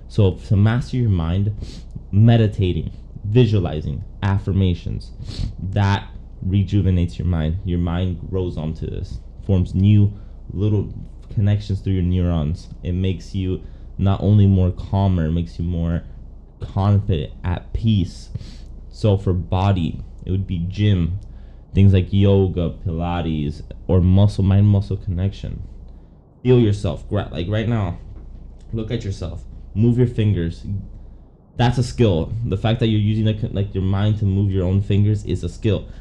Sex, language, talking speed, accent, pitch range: male, English, 140 wpm, American, 85-105 Hz